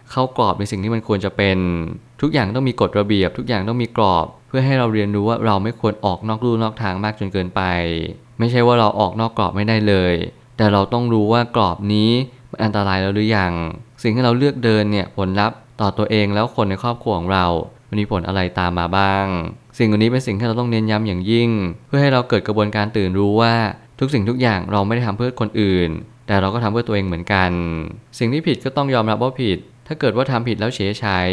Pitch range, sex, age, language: 100-120 Hz, male, 20-39, Thai